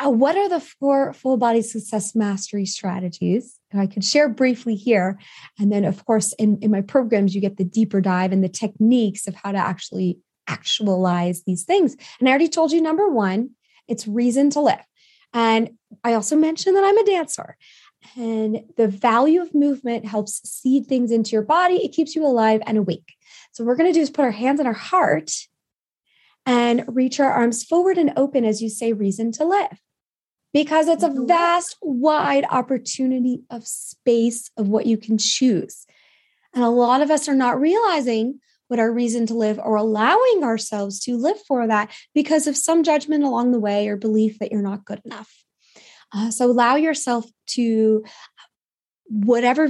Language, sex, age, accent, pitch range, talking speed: English, female, 20-39, American, 215-285 Hz, 185 wpm